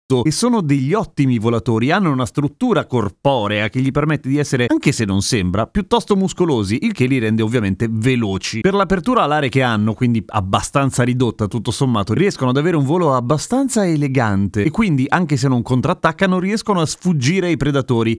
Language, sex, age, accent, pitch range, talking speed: Italian, male, 30-49, native, 115-160 Hz, 180 wpm